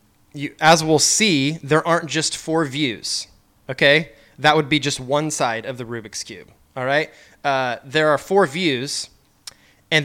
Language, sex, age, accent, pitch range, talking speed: English, male, 20-39, American, 135-165 Hz, 165 wpm